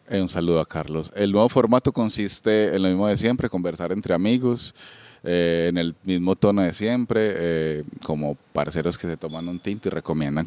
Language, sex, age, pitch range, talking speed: Spanish, male, 30-49, 80-100 Hz, 190 wpm